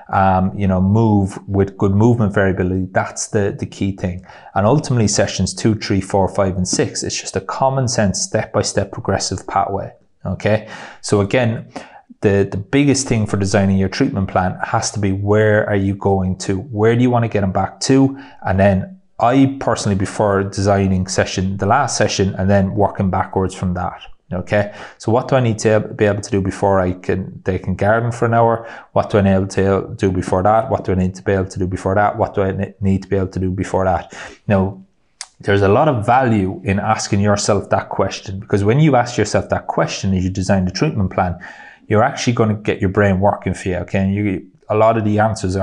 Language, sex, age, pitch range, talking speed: English, male, 30-49, 95-110 Hz, 220 wpm